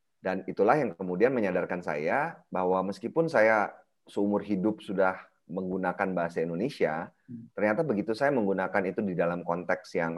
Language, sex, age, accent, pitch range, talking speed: Indonesian, male, 30-49, native, 85-110 Hz, 140 wpm